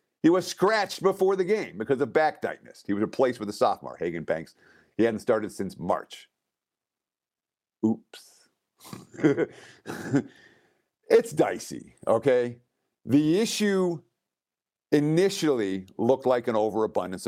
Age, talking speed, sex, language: 50-69, 120 wpm, male, English